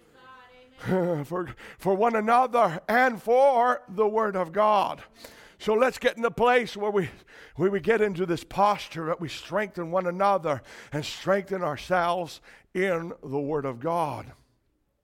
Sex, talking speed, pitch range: male, 150 wpm, 205-275 Hz